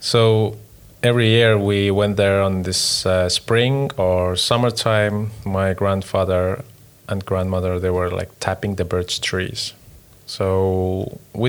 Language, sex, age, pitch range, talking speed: English, male, 20-39, 95-115 Hz, 130 wpm